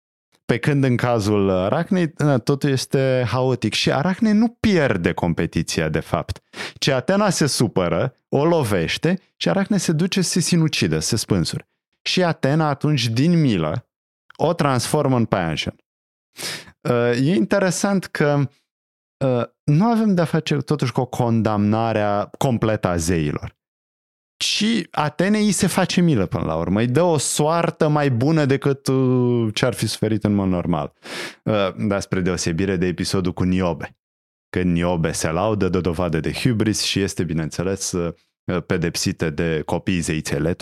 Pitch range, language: 90-150 Hz, Romanian